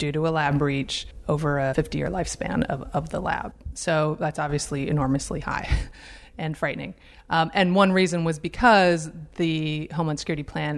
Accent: American